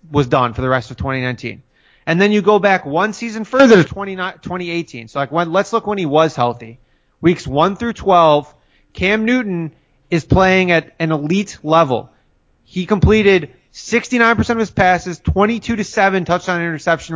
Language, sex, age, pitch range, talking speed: English, male, 30-49, 140-190 Hz, 170 wpm